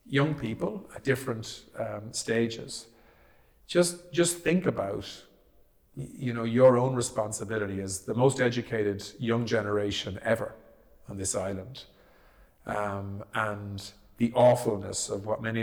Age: 50-69